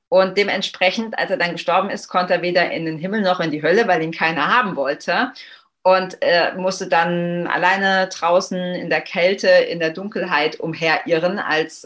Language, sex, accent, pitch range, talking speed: German, female, German, 165-195 Hz, 175 wpm